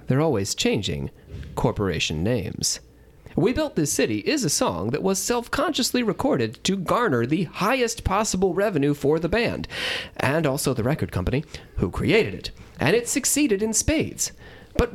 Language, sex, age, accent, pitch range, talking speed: English, male, 30-49, American, 160-245 Hz, 155 wpm